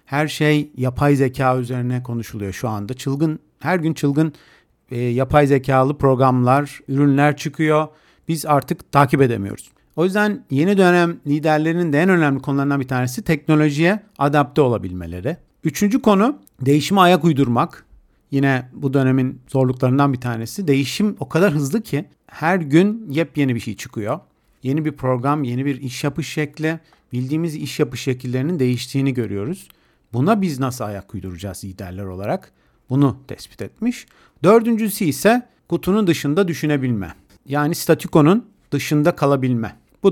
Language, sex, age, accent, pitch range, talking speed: Turkish, male, 50-69, native, 130-170 Hz, 135 wpm